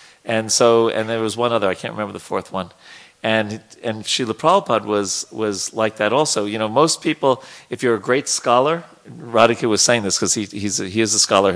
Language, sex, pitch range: English, male, 100-120 Hz